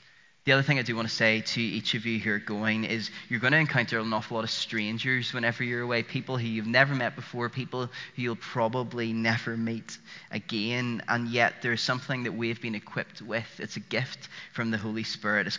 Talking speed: 225 wpm